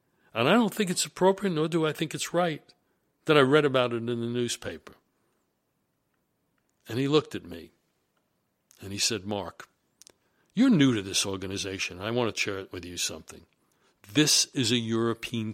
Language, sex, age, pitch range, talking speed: English, male, 60-79, 100-125 Hz, 180 wpm